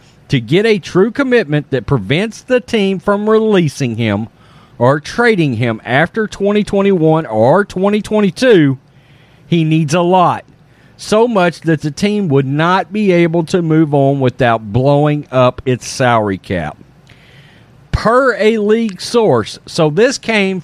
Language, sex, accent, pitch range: English, male, American, 135-190 Hz